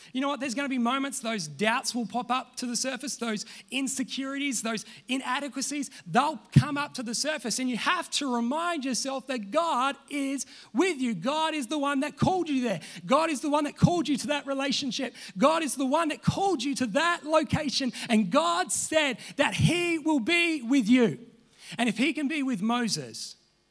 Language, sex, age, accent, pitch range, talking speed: English, male, 30-49, Australian, 170-270 Hz, 205 wpm